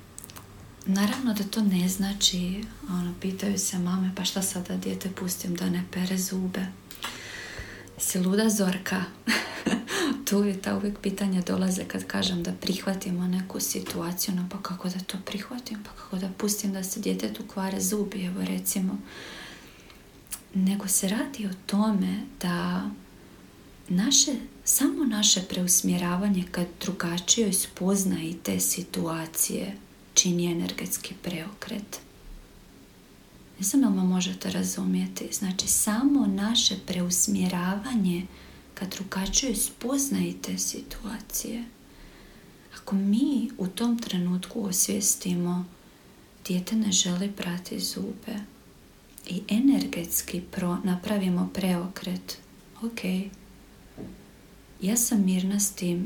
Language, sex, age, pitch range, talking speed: Croatian, female, 40-59, 180-210 Hz, 110 wpm